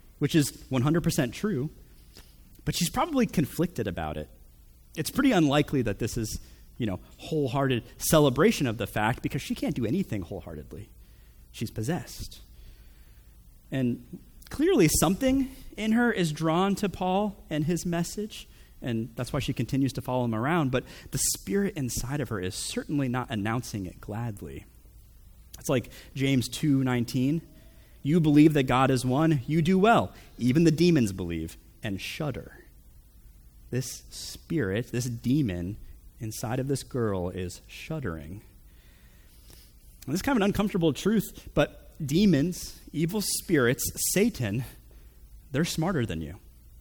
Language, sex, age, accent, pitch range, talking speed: English, male, 30-49, American, 100-165 Hz, 140 wpm